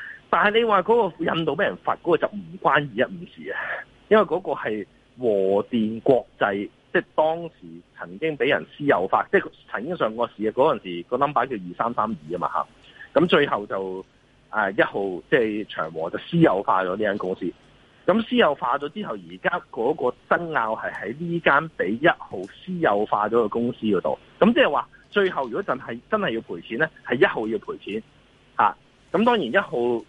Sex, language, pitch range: male, Chinese, 120-190 Hz